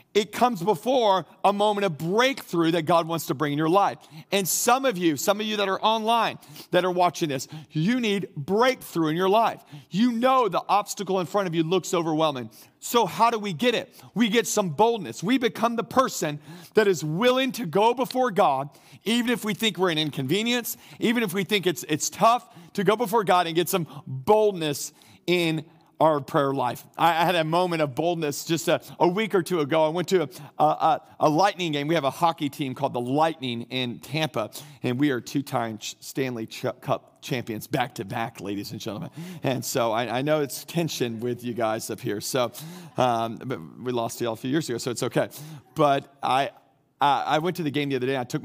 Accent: American